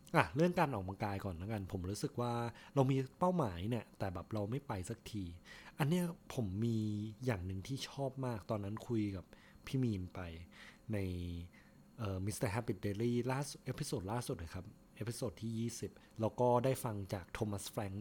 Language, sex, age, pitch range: Thai, male, 20-39, 100-135 Hz